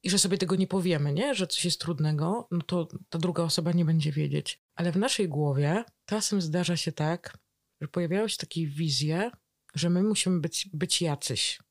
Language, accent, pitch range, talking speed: Polish, native, 155-190 Hz, 195 wpm